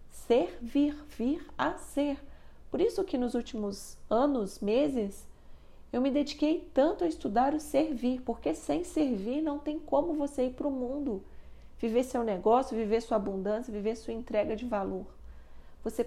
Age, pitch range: 40-59, 200-270 Hz